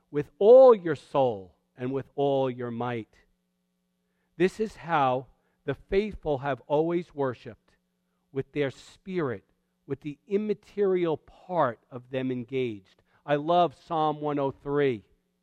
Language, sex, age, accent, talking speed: English, male, 50-69, American, 120 wpm